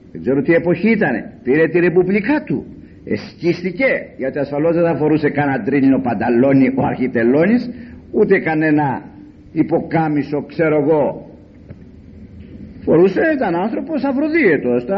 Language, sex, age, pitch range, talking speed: Greek, male, 50-69, 155-250 Hz, 110 wpm